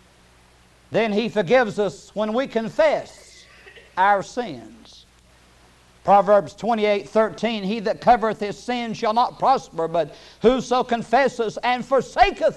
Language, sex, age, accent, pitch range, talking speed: English, male, 60-79, American, 150-250 Hz, 120 wpm